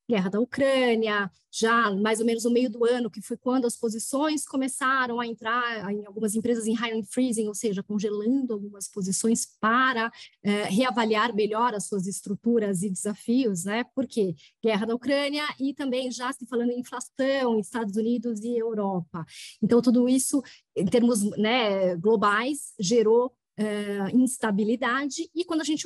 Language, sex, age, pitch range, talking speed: Portuguese, female, 20-39, 220-260 Hz, 160 wpm